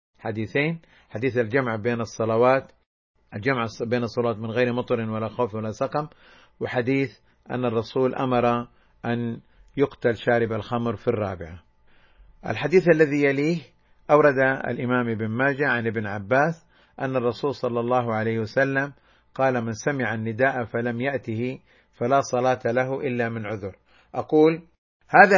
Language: Arabic